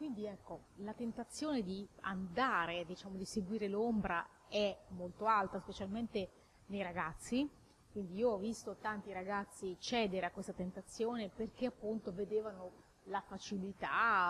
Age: 30-49